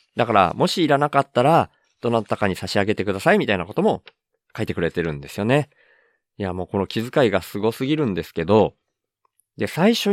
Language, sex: Japanese, male